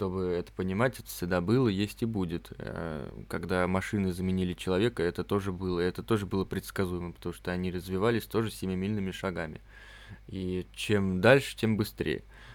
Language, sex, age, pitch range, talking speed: Russian, male, 20-39, 95-120 Hz, 155 wpm